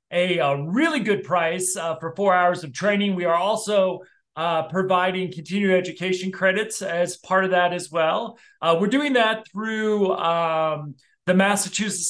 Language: English